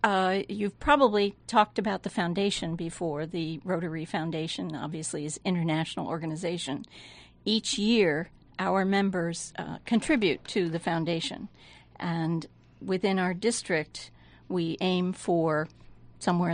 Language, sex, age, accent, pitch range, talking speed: English, female, 50-69, American, 160-190 Hz, 115 wpm